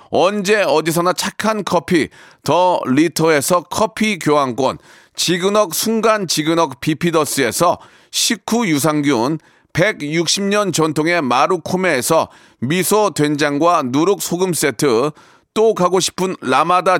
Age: 40-59